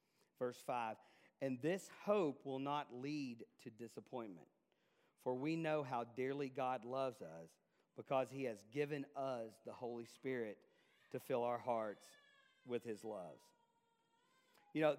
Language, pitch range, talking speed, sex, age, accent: English, 120-155 Hz, 140 wpm, male, 40-59, American